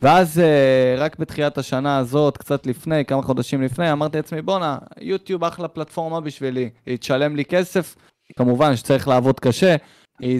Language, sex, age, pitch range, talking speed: Hebrew, male, 20-39, 130-170 Hz, 155 wpm